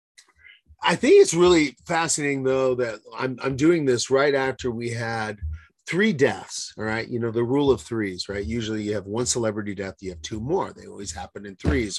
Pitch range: 105-145 Hz